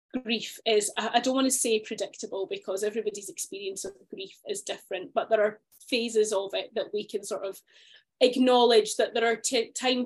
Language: English